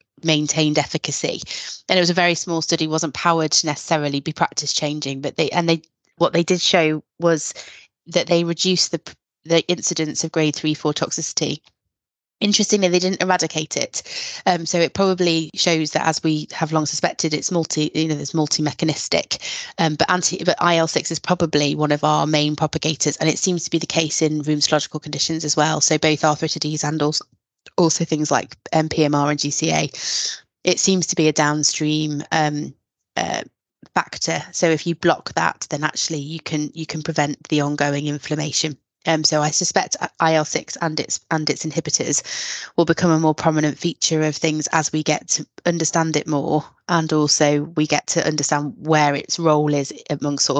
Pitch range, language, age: 150-165 Hz, English, 20-39